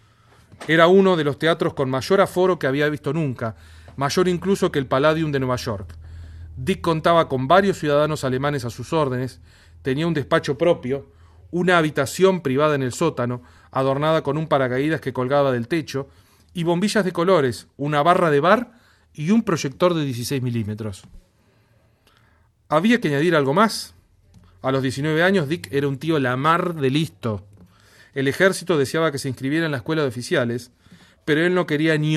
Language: Spanish